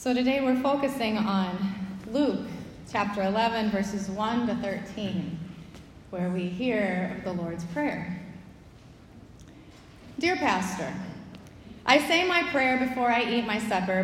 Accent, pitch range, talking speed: American, 200-270 Hz, 130 wpm